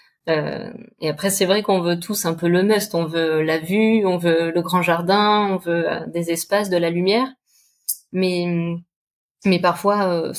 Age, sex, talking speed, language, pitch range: 20-39, female, 190 wpm, French, 170-200 Hz